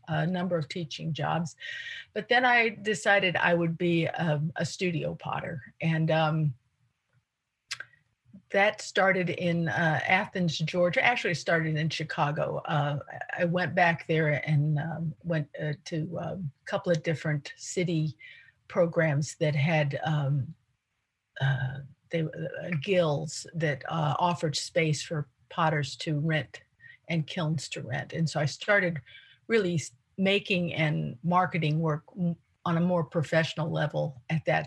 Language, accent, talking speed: English, American, 140 wpm